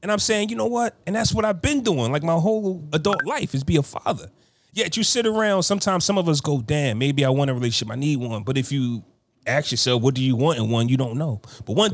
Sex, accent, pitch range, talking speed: male, American, 115-155 Hz, 275 wpm